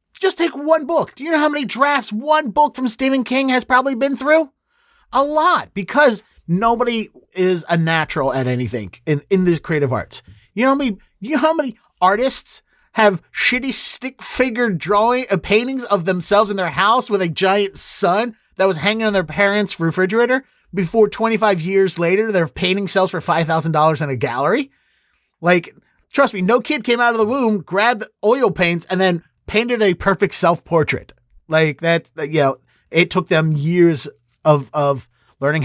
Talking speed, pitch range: 185 wpm, 155-250 Hz